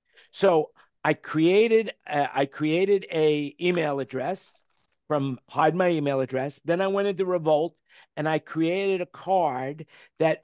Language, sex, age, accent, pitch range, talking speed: English, male, 50-69, American, 145-185 Hz, 145 wpm